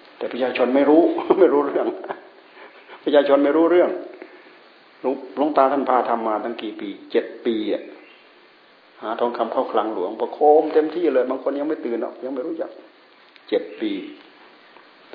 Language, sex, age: Thai, male, 60-79